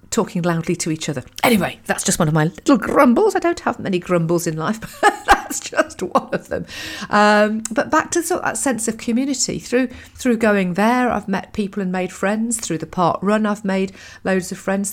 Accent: British